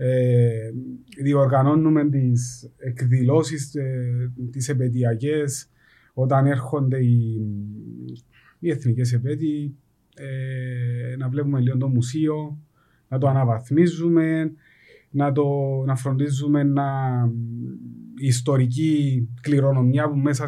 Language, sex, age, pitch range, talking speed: Greek, male, 30-49, 125-150 Hz, 80 wpm